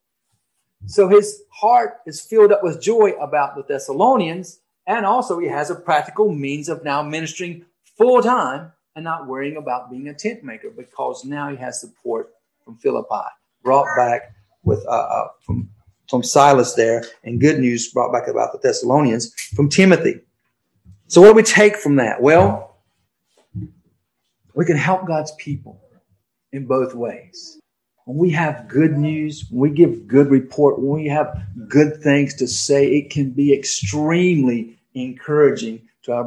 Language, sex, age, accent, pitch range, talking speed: English, male, 40-59, American, 130-170 Hz, 160 wpm